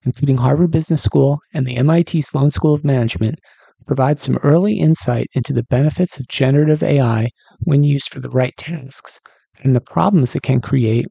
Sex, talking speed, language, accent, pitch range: male, 180 wpm, English, American, 125-160 Hz